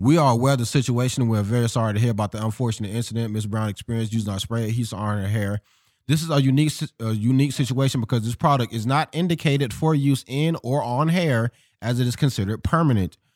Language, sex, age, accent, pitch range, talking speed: English, male, 20-39, American, 100-130 Hz, 220 wpm